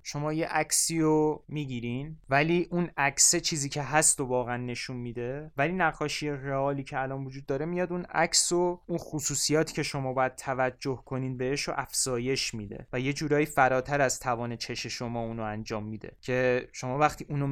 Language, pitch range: Persian, 125-150 Hz